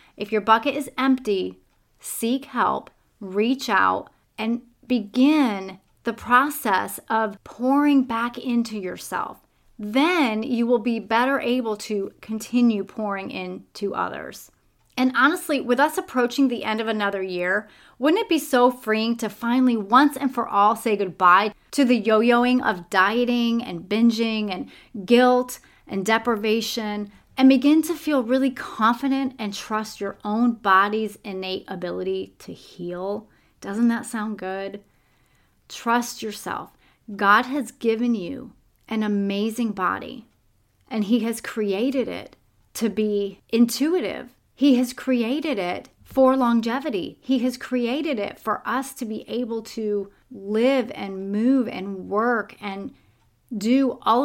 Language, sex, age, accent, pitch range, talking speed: English, female, 30-49, American, 205-255 Hz, 135 wpm